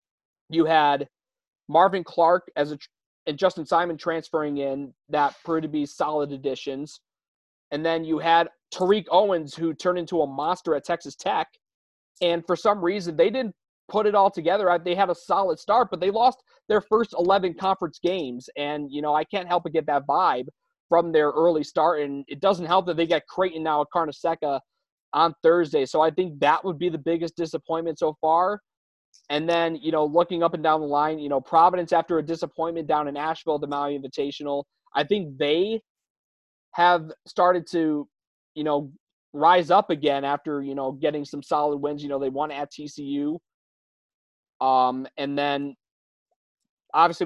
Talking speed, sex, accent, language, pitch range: 180 wpm, male, American, English, 145-175 Hz